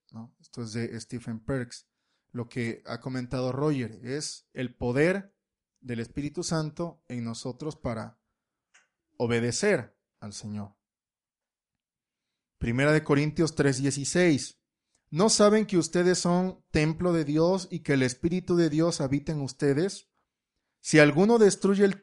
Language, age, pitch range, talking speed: Spanish, 30-49, 125-160 Hz, 130 wpm